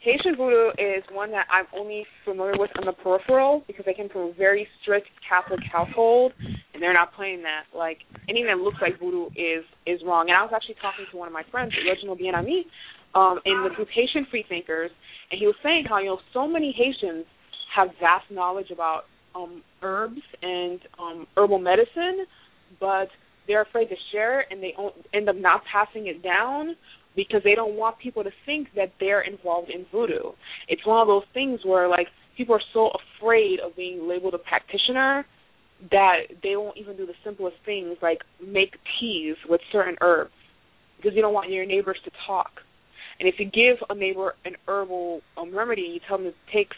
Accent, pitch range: American, 180-225 Hz